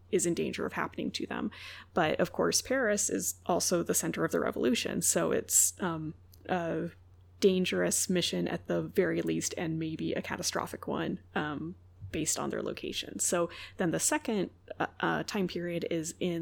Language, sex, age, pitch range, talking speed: English, female, 20-39, 150-185 Hz, 170 wpm